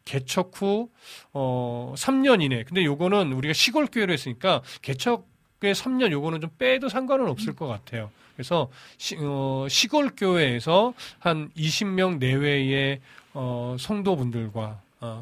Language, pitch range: Korean, 125-185 Hz